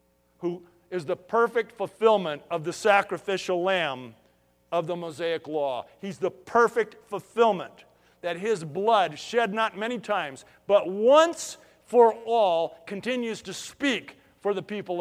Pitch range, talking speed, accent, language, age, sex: 175-240 Hz, 135 wpm, American, English, 50-69, male